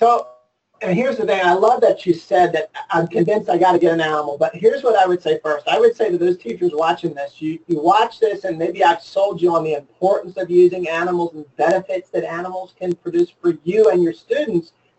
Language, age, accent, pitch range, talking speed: English, 40-59, American, 175-235 Hz, 240 wpm